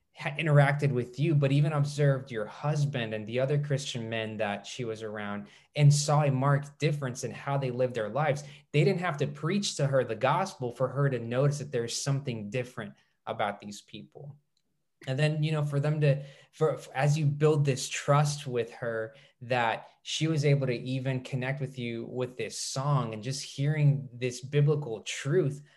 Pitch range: 125-145 Hz